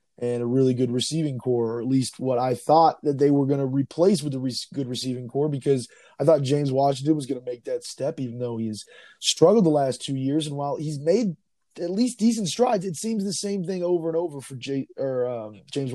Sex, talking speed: male, 245 wpm